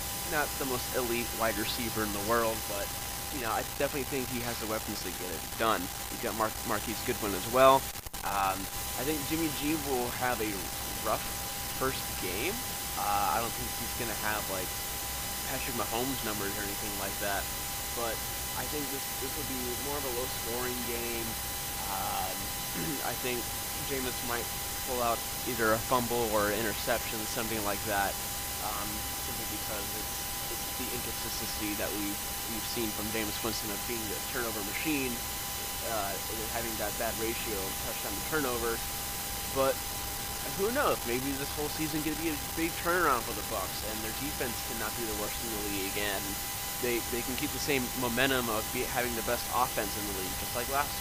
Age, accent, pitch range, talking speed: 20-39, American, 100-125 Hz, 180 wpm